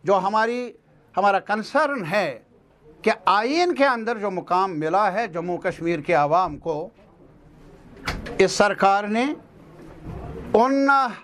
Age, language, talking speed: 60-79, Urdu, 115 wpm